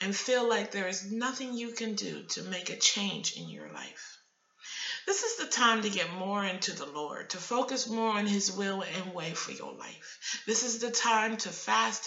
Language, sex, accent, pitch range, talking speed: English, female, American, 190-255 Hz, 215 wpm